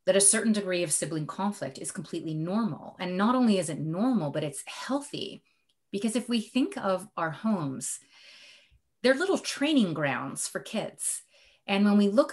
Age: 30-49